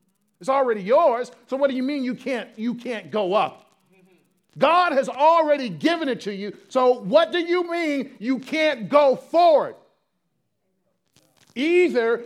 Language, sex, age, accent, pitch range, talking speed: English, male, 50-69, American, 220-300 Hz, 150 wpm